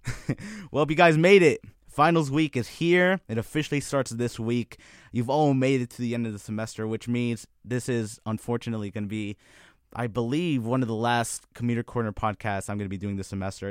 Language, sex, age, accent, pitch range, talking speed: English, male, 20-39, American, 100-125 Hz, 210 wpm